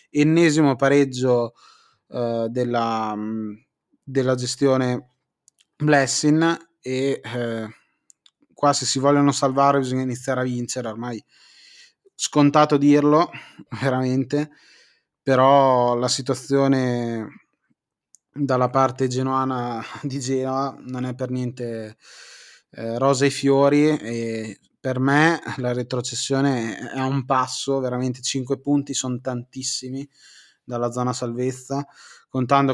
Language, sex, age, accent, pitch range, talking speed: Italian, male, 20-39, native, 125-140 Hz, 100 wpm